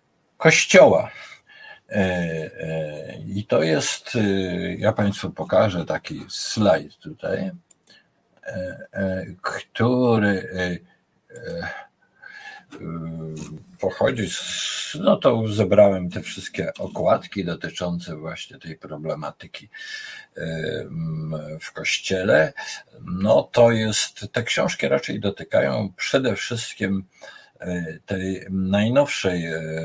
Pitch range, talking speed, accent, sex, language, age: 85-110 Hz, 70 wpm, native, male, Polish, 50-69